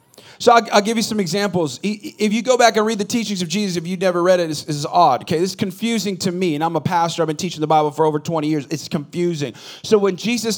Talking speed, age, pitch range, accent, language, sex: 270 wpm, 40-59, 190-240 Hz, American, English, male